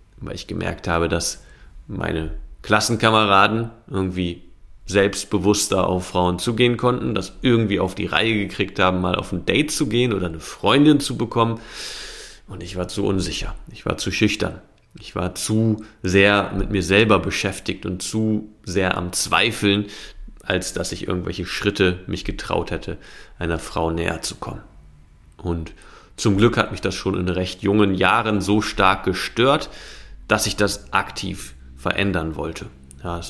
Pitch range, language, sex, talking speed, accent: 90-110 Hz, German, male, 160 wpm, German